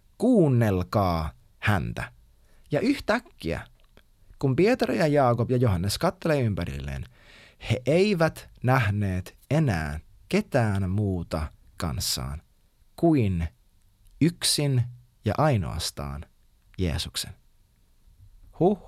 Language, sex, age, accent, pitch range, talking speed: Finnish, male, 30-49, native, 100-150 Hz, 80 wpm